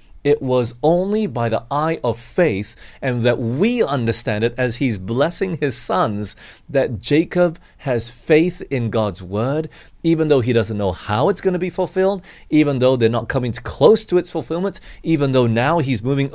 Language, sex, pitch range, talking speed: English, male, 105-140 Hz, 185 wpm